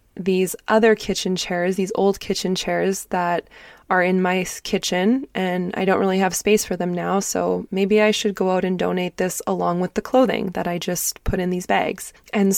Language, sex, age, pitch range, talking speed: English, female, 20-39, 185-220 Hz, 205 wpm